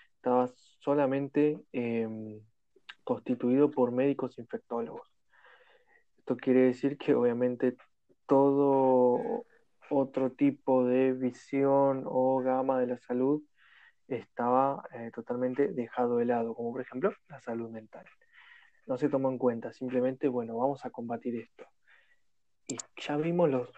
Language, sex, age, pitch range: Spanish, male, 20-39, 125-140 Hz